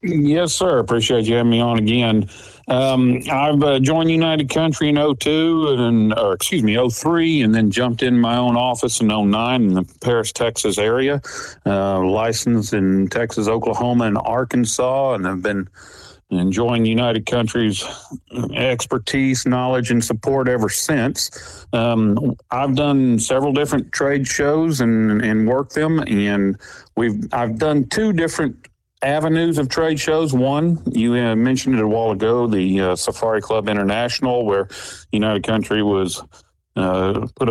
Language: English